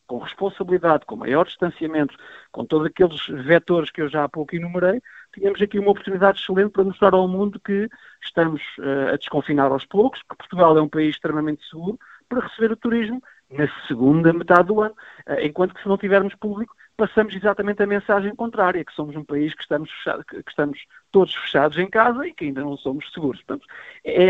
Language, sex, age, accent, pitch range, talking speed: Portuguese, male, 50-69, Portuguese, 150-195 Hz, 190 wpm